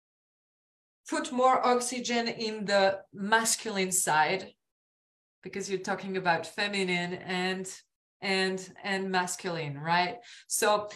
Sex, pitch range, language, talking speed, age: female, 195-255 Hz, Vietnamese, 95 wpm, 30-49